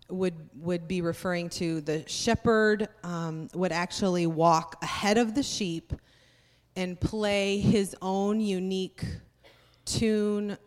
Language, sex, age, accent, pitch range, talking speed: English, female, 30-49, American, 170-205 Hz, 120 wpm